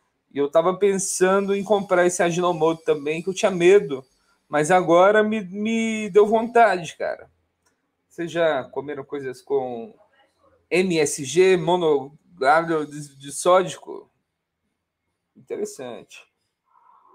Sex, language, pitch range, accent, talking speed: male, Portuguese, 160-225 Hz, Brazilian, 110 wpm